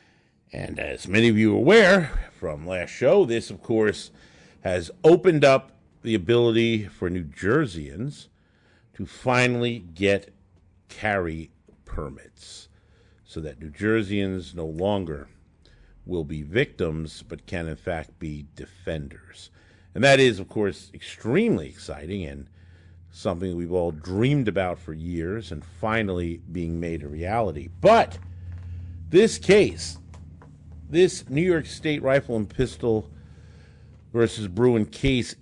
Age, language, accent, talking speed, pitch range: 50-69, English, American, 125 wpm, 85-115 Hz